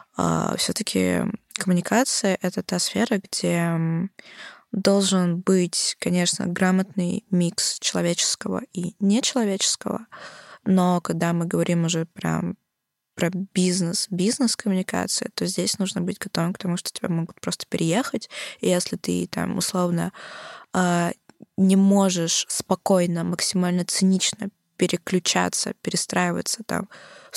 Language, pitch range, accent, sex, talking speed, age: Russian, 165-190 Hz, native, female, 110 wpm, 20-39